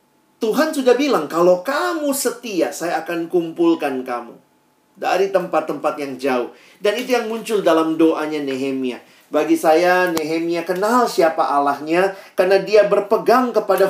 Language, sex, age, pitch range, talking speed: Indonesian, male, 40-59, 155-230 Hz, 135 wpm